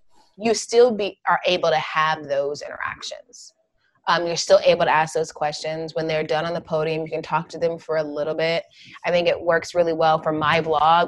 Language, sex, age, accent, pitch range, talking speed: English, female, 20-39, American, 155-180 Hz, 220 wpm